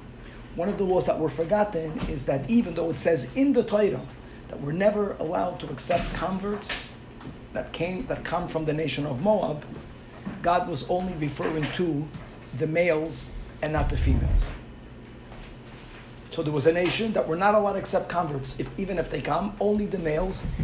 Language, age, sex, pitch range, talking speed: English, 50-69, male, 140-200 Hz, 185 wpm